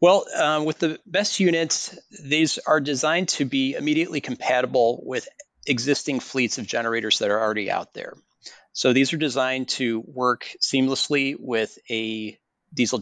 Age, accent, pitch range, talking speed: 40-59, American, 115-145 Hz, 150 wpm